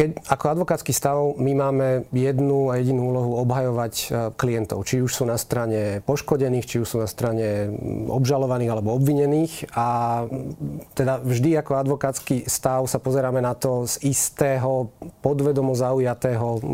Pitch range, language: 125-140 Hz, Slovak